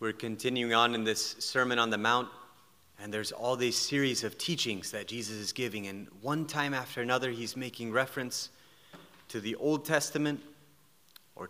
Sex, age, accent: male, 30-49, American